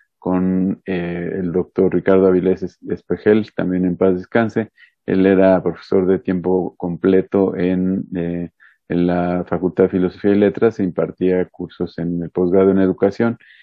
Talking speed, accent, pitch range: 150 wpm, Mexican, 90-95 Hz